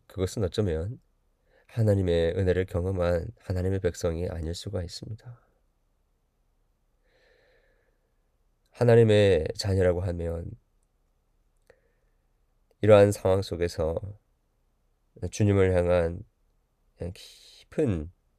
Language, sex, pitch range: Korean, male, 80-105 Hz